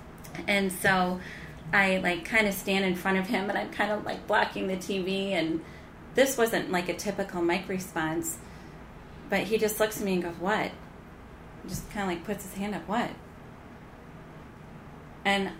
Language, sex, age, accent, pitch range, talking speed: English, female, 30-49, American, 165-200 Hz, 180 wpm